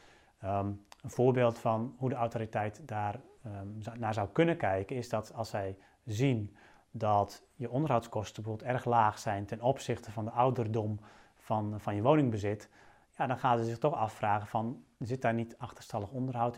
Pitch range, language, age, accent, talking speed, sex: 105-125 Hz, Dutch, 30-49, Dutch, 175 wpm, male